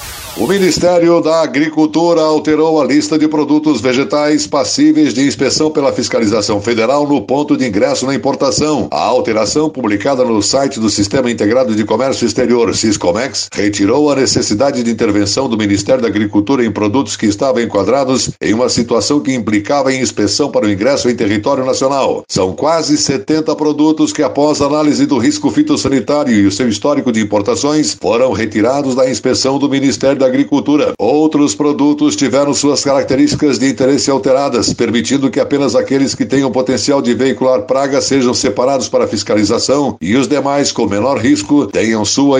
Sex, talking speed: male, 165 wpm